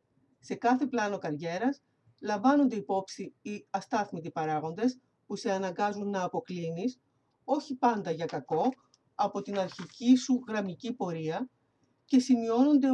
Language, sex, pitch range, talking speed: Greek, female, 180-255 Hz, 120 wpm